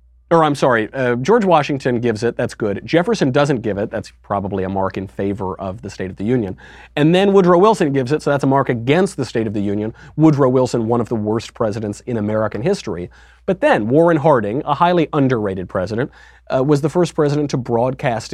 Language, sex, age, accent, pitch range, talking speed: English, male, 30-49, American, 105-145 Hz, 220 wpm